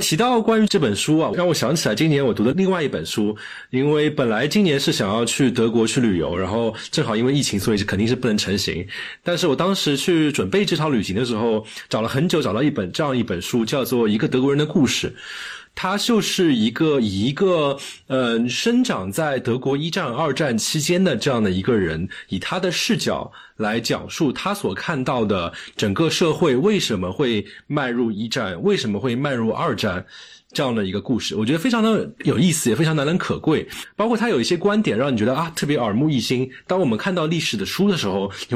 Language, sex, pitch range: Chinese, male, 120-185 Hz